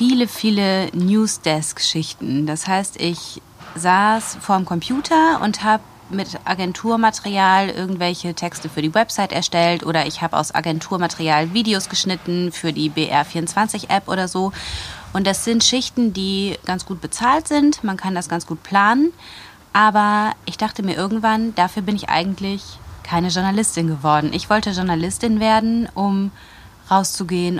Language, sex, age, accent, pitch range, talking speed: German, female, 30-49, German, 165-205 Hz, 140 wpm